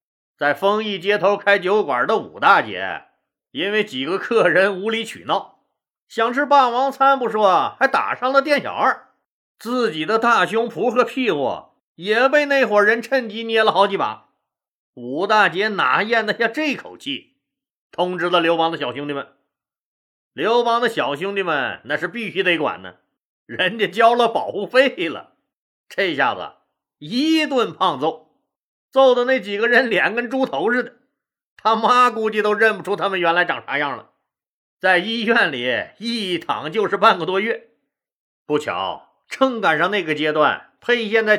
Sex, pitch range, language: male, 195-250 Hz, Chinese